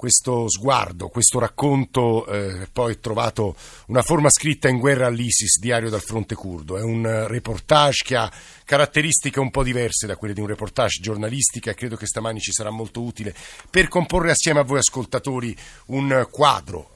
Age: 50-69